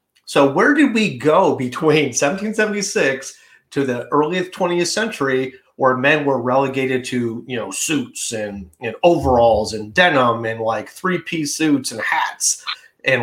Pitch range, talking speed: 115-145 Hz, 155 wpm